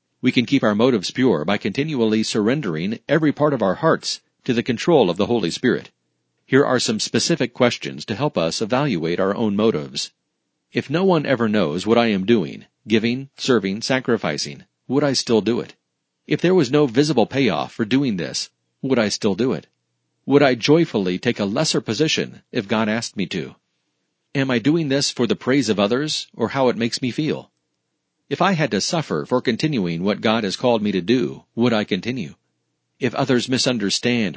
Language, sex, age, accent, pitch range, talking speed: English, male, 40-59, American, 105-135 Hz, 195 wpm